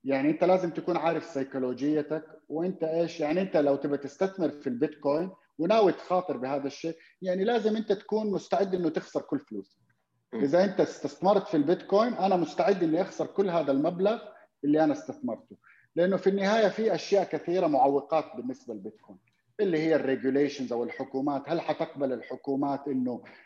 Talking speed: 155 wpm